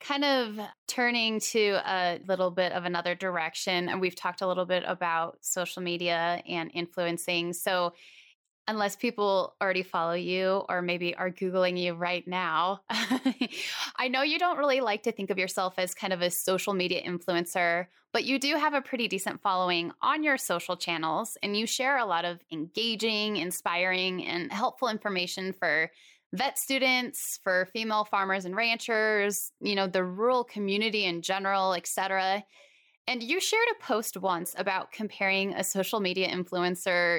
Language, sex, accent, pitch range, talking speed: English, female, American, 180-230 Hz, 165 wpm